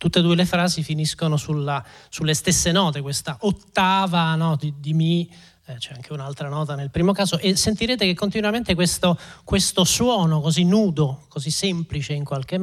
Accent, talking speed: native, 165 wpm